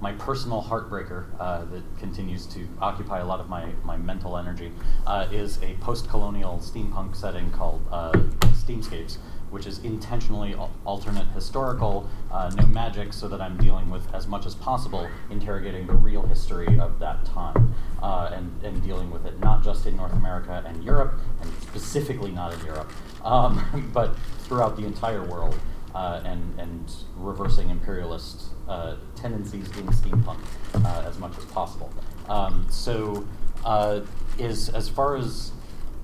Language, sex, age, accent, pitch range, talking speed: English, male, 30-49, American, 90-110 Hz, 155 wpm